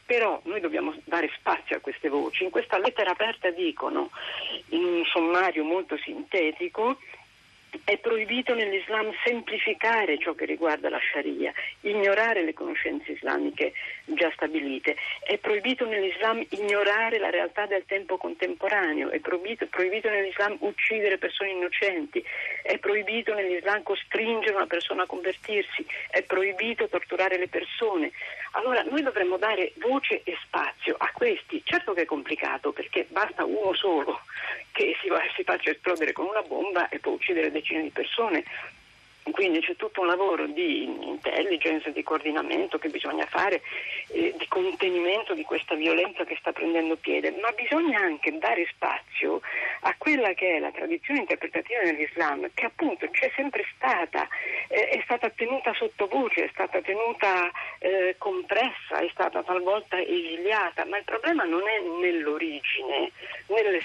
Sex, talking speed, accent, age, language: female, 145 wpm, native, 40-59, Italian